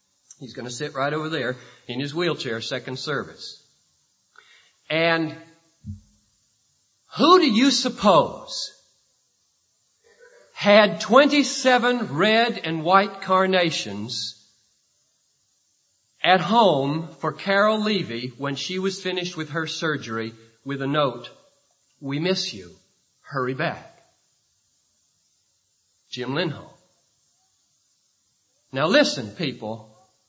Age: 50-69